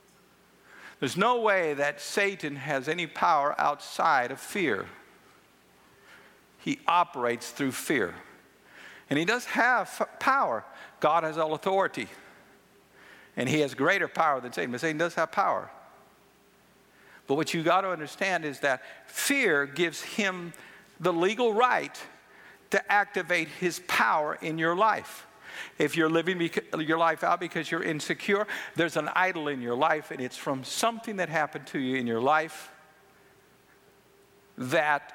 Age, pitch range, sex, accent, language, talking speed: 60-79, 145-185 Hz, male, American, English, 145 wpm